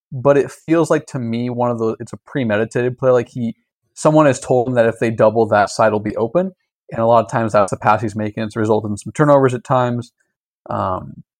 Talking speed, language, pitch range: 245 wpm, English, 105-125 Hz